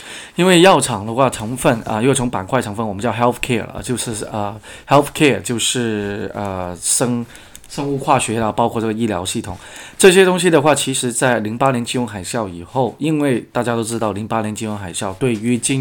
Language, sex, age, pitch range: Chinese, male, 20-39, 110-140 Hz